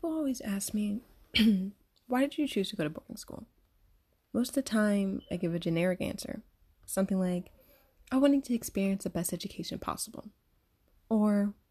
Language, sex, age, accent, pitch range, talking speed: English, female, 20-39, American, 170-220 Hz, 170 wpm